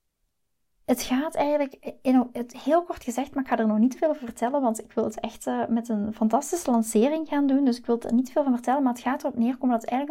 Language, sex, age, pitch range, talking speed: Dutch, female, 20-39, 225-265 Hz, 250 wpm